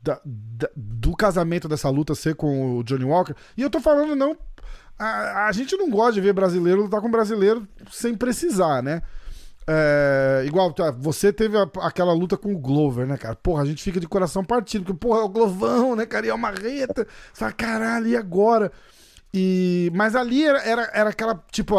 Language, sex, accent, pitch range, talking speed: Portuguese, male, Brazilian, 155-215 Hz, 200 wpm